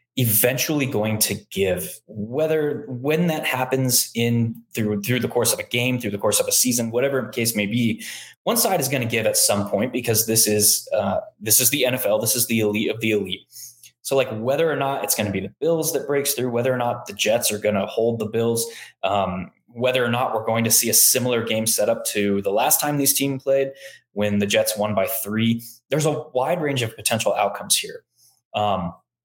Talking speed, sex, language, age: 225 wpm, male, English, 20-39